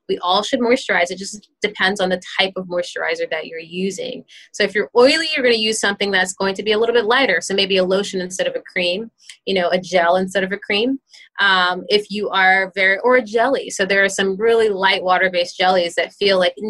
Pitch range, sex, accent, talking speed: 185-225 Hz, female, American, 235 wpm